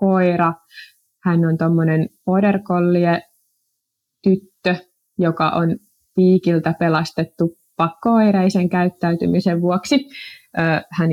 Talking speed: 70 wpm